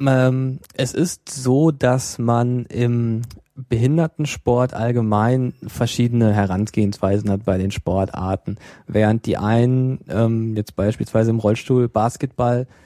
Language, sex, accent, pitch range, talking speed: German, male, German, 105-130 Hz, 105 wpm